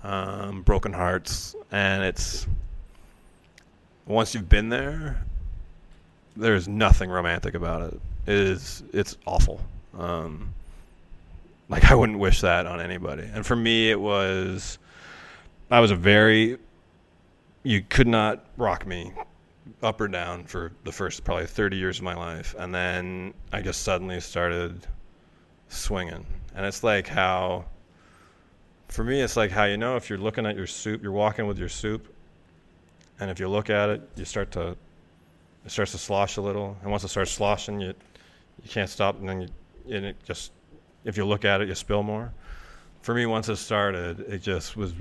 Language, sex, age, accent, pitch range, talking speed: English, male, 20-39, American, 85-105 Hz, 170 wpm